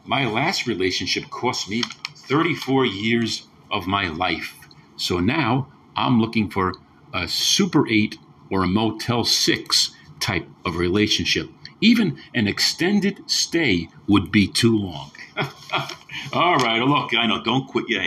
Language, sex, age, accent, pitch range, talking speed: English, male, 50-69, American, 100-130 Hz, 135 wpm